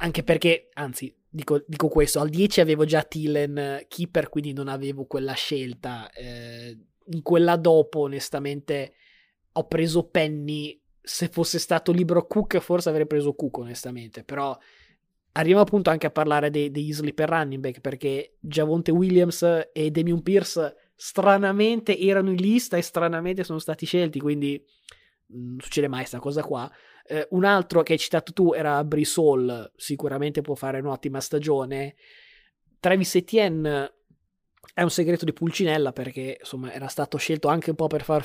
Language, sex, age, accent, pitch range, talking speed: Italian, male, 20-39, native, 140-165 Hz, 155 wpm